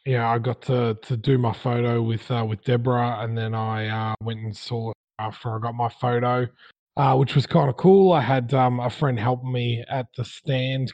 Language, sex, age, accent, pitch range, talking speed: English, male, 20-39, Australian, 115-135 Hz, 225 wpm